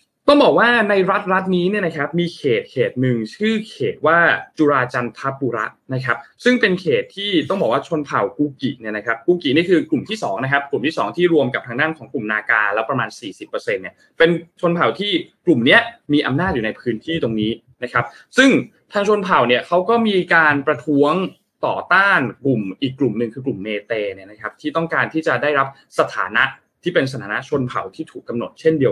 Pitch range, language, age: 125-180 Hz, Thai, 20-39